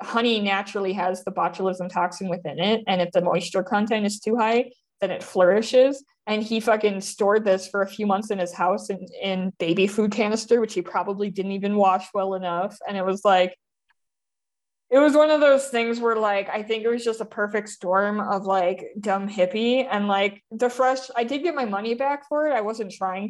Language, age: English, 20-39